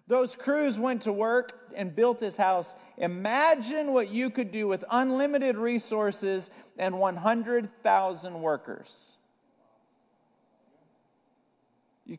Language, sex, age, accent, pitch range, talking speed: English, male, 40-59, American, 140-230 Hz, 105 wpm